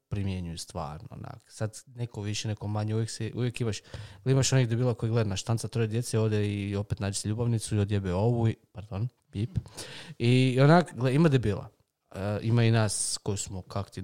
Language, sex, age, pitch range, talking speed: Croatian, male, 20-39, 105-125 Hz, 190 wpm